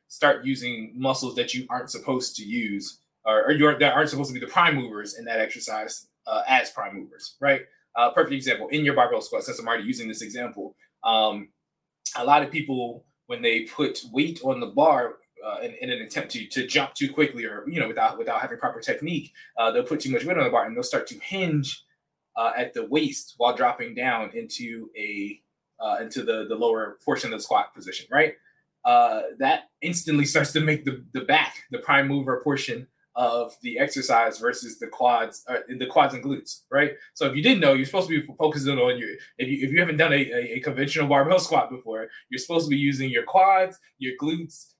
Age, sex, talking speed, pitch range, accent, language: 20-39, male, 220 wpm, 130-185 Hz, American, English